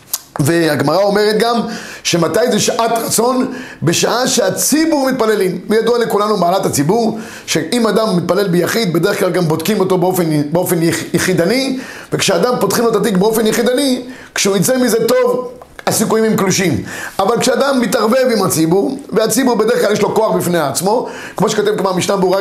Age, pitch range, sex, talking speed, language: 30-49, 185-245 Hz, male, 160 wpm, Hebrew